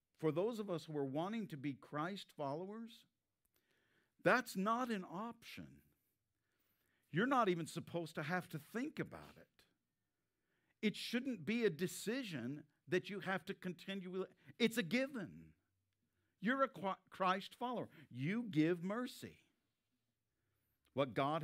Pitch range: 120-185 Hz